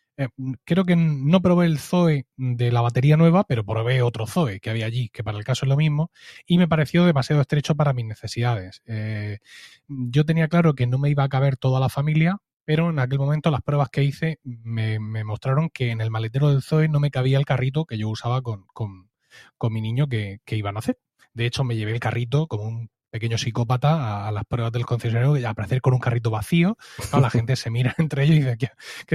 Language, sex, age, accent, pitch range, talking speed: Spanish, male, 20-39, Spanish, 120-160 Hz, 230 wpm